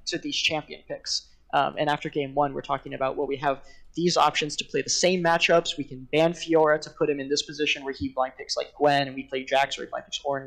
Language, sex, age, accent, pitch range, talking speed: English, male, 20-39, American, 135-160 Hz, 280 wpm